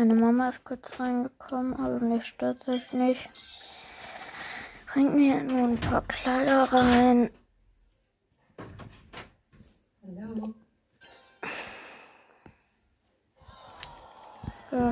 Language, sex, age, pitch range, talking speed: German, female, 20-39, 215-245 Hz, 80 wpm